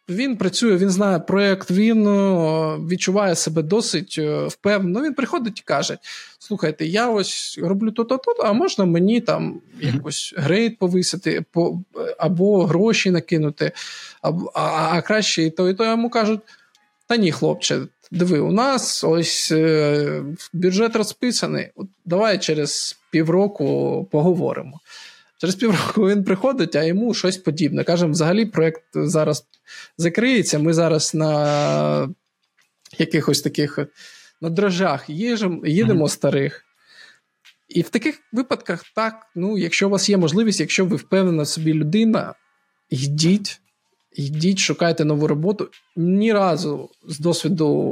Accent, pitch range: native, 160-210 Hz